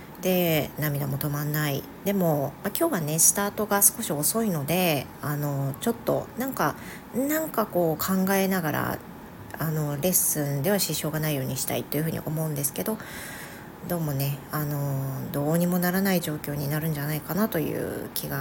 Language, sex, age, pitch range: Japanese, female, 40-59, 145-190 Hz